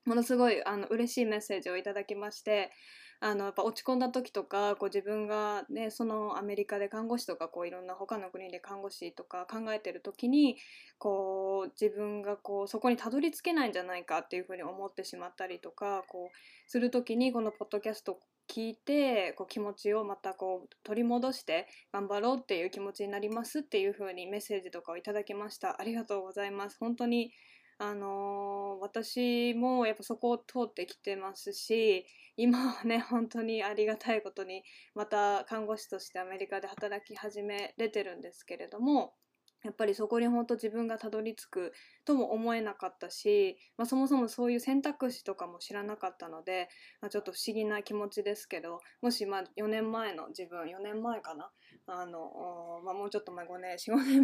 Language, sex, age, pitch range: Japanese, female, 20-39, 195-230 Hz